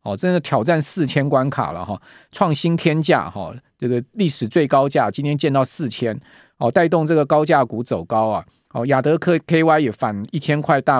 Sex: male